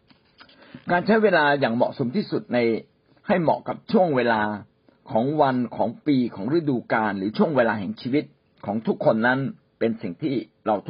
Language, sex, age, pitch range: Thai, male, 60-79, 120-160 Hz